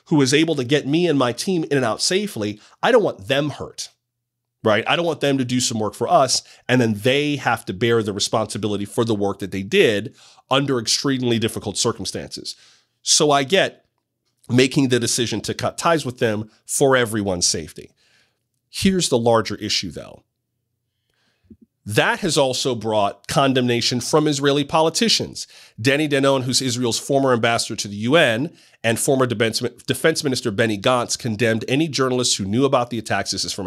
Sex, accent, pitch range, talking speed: male, American, 110-140 Hz, 180 wpm